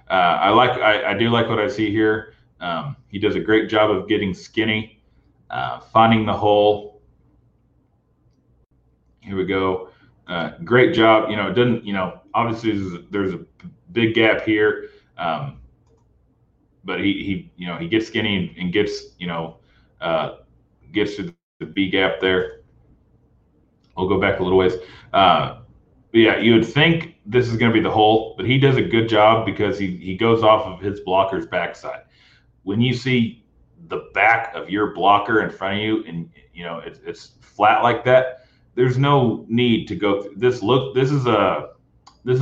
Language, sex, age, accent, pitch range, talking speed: English, male, 30-49, American, 100-120 Hz, 185 wpm